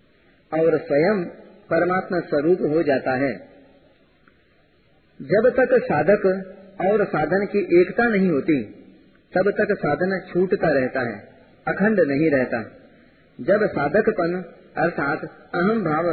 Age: 40-59